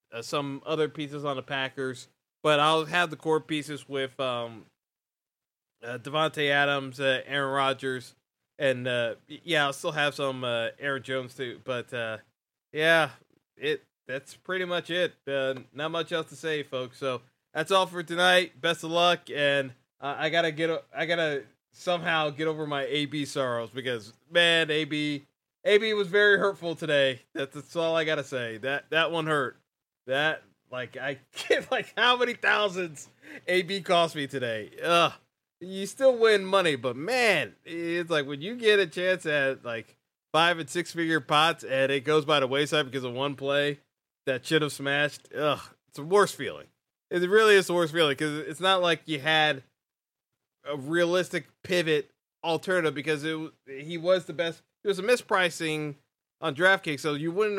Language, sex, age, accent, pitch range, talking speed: English, male, 20-39, American, 135-170 Hz, 175 wpm